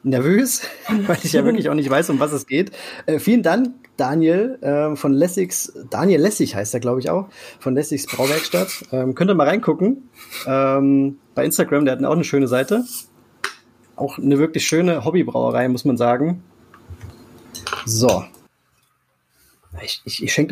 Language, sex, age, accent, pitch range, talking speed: German, male, 30-49, German, 120-170 Hz, 165 wpm